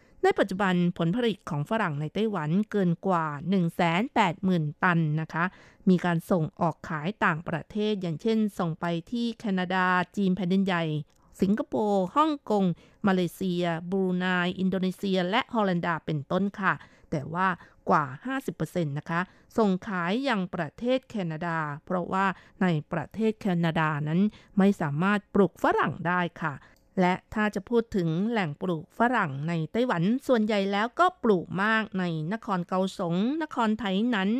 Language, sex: Thai, female